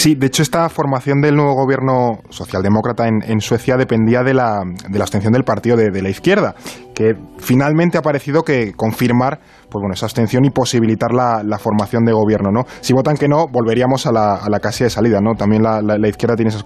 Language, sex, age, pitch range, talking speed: Spanish, male, 20-39, 110-145 Hz, 225 wpm